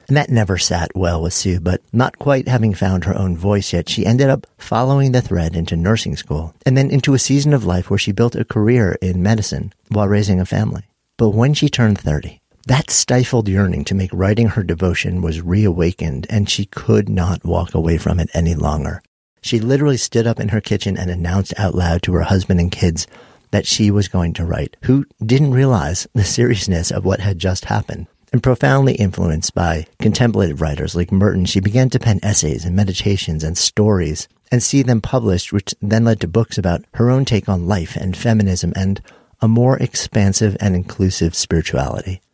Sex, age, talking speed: male, 50-69, 200 wpm